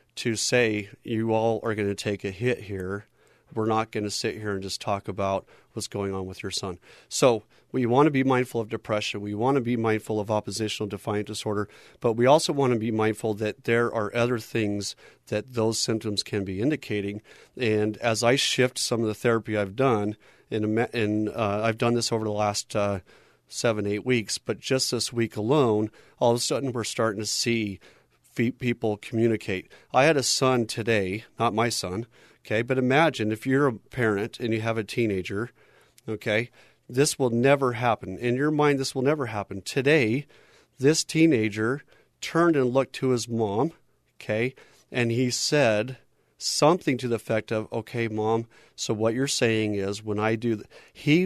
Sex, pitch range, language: male, 105-125 Hz, English